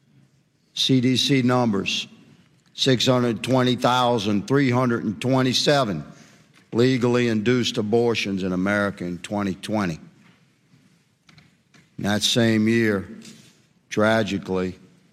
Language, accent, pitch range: English, American, 95-120 Hz